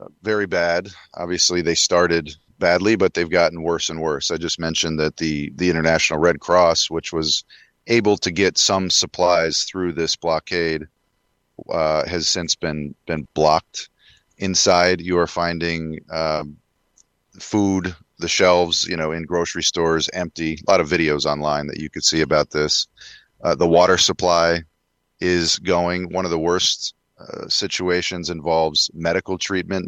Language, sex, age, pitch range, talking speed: English, male, 30-49, 80-90 Hz, 155 wpm